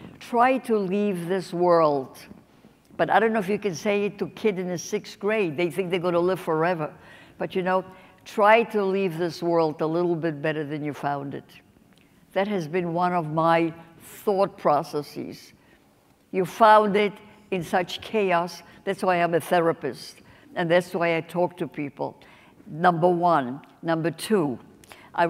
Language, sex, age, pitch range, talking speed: English, female, 70-89, 170-210 Hz, 180 wpm